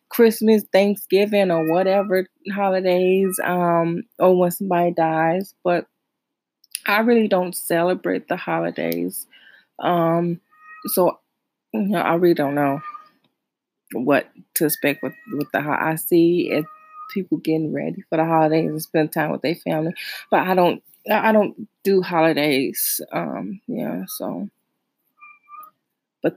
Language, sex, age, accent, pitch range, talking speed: English, female, 20-39, American, 185-230 Hz, 130 wpm